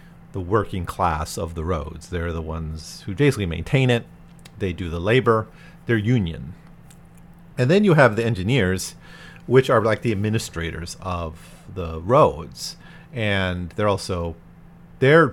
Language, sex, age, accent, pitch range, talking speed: English, male, 40-59, American, 85-130 Hz, 135 wpm